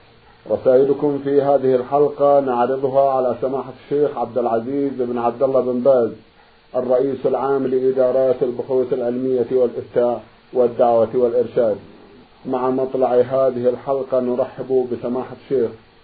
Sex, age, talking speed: male, 50-69, 110 wpm